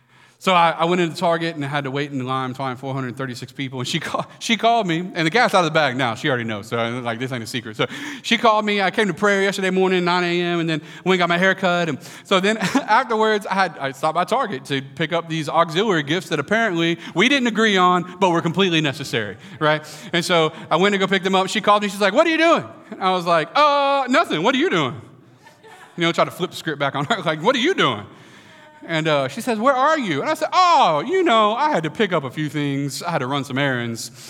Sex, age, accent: male, 30-49, American